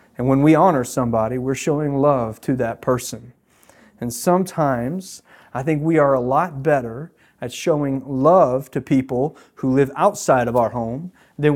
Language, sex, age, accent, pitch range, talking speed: English, male, 40-59, American, 120-155 Hz, 165 wpm